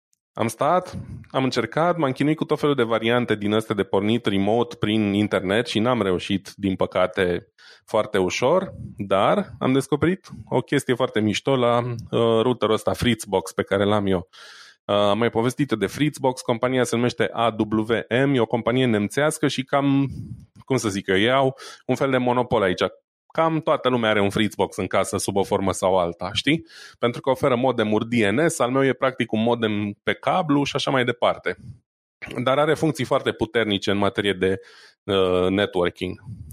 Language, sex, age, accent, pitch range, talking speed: Romanian, male, 20-39, native, 105-130 Hz, 175 wpm